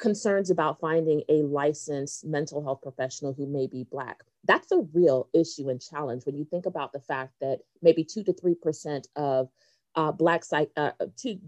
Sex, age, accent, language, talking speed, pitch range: female, 30-49, American, English, 180 wpm, 145-190 Hz